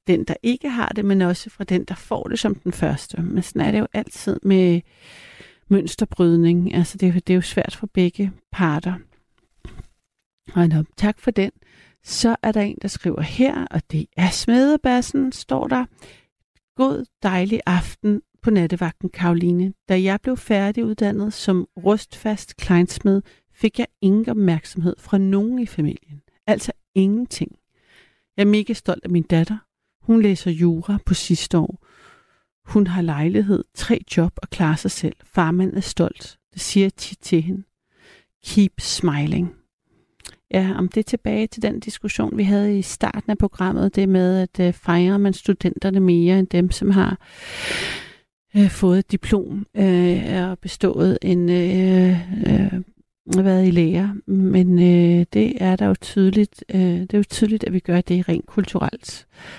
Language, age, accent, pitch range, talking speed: Danish, 60-79, native, 180-210 Hz, 160 wpm